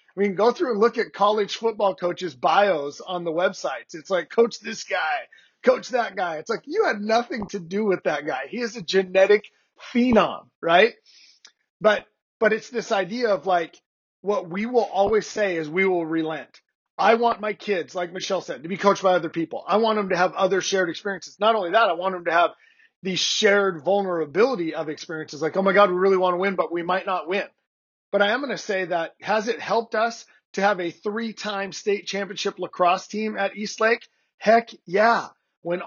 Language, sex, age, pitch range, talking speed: English, male, 30-49, 175-215 Hz, 210 wpm